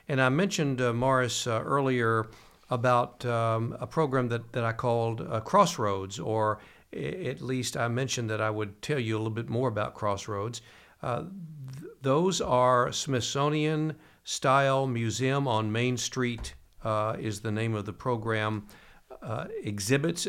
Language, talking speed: English, 150 wpm